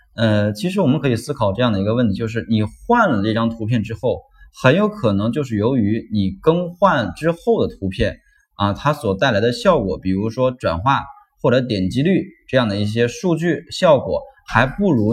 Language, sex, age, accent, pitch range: Chinese, male, 20-39, native, 100-140 Hz